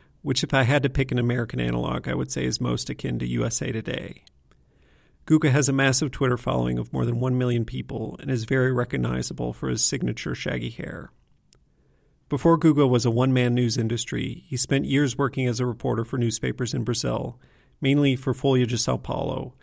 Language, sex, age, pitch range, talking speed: English, male, 40-59, 115-135 Hz, 195 wpm